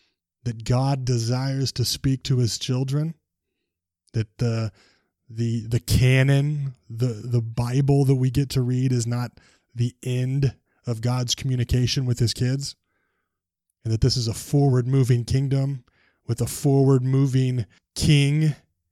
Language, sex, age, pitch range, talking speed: English, male, 20-39, 115-135 Hz, 135 wpm